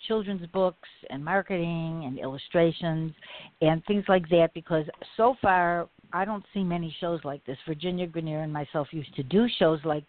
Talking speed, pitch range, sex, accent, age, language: 170 wpm, 155-190 Hz, female, American, 60-79, English